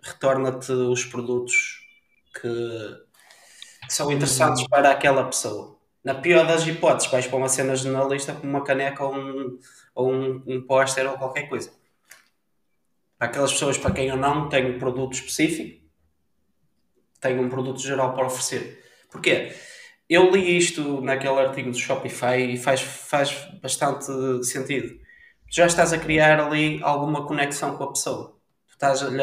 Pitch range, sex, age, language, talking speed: 130-145 Hz, male, 20-39, Portuguese, 145 wpm